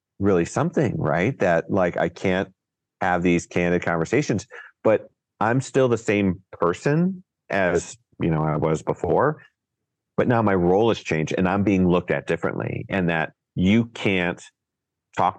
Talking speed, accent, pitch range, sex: 155 wpm, American, 80-95 Hz, male